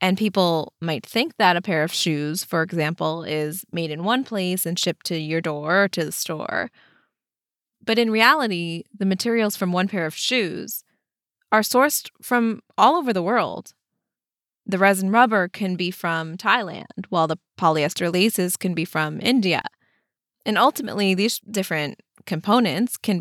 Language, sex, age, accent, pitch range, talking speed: English, female, 20-39, American, 170-215 Hz, 165 wpm